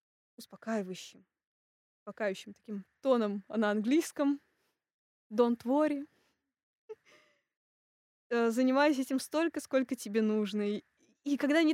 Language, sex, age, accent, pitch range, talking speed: Russian, female, 20-39, native, 220-290 Hz, 90 wpm